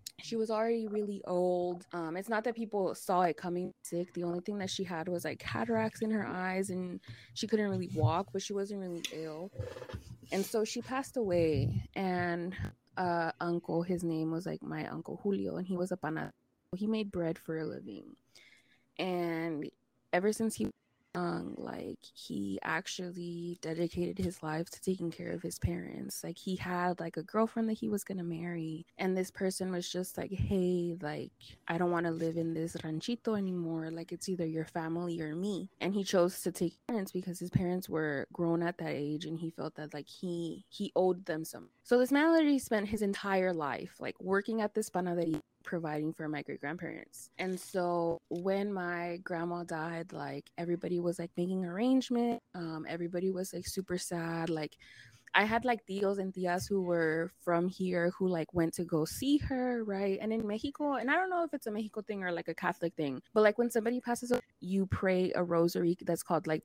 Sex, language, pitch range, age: female, English, 165-195 Hz, 20-39